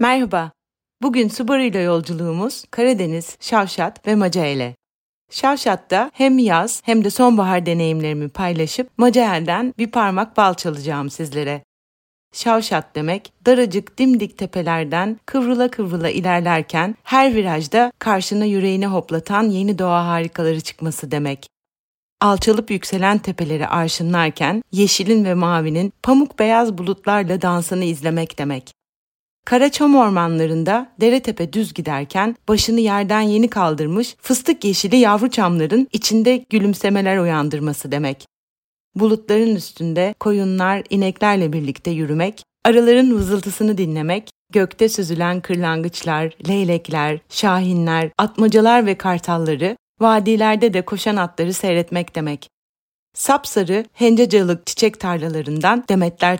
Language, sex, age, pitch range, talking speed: Turkish, female, 40-59, 165-220 Hz, 105 wpm